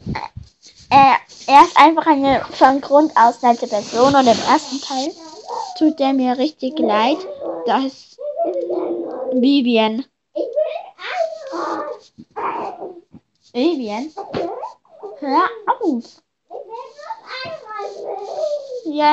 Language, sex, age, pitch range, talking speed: German, female, 10-29, 245-320 Hz, 80 wpm